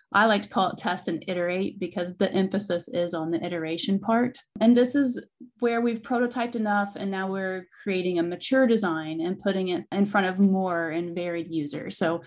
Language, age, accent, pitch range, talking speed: English, 30-49, American, 175-215 Hz, 200 wpm